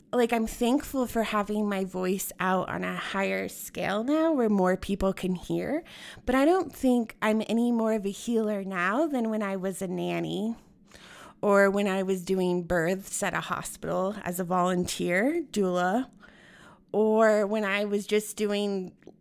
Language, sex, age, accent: English, female, 20-39, American